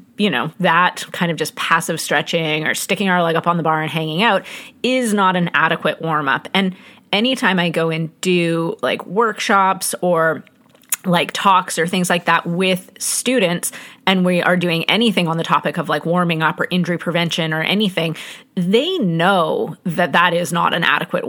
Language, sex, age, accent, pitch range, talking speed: English, female, 30-49, American, 165-200 Hz, 185 wpm